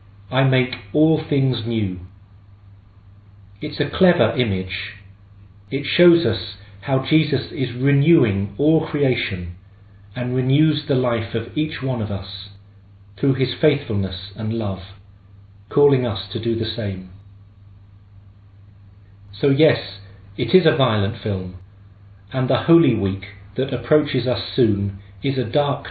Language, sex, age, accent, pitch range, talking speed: English, male, 40-59, British, 100-130 Hz, 130 wpm